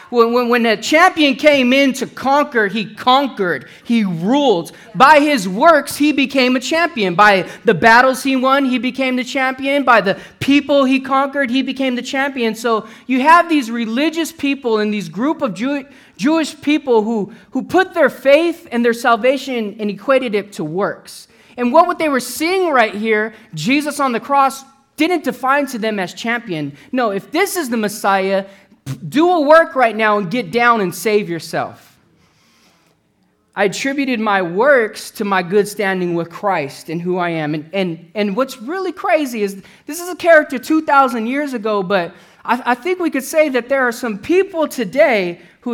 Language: English